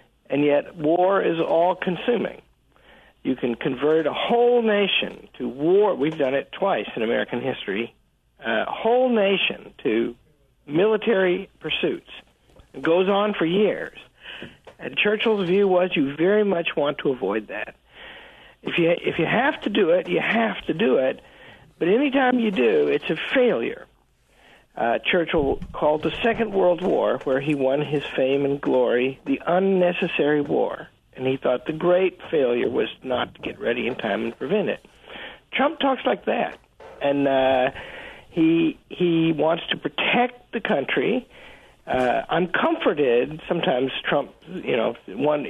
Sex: male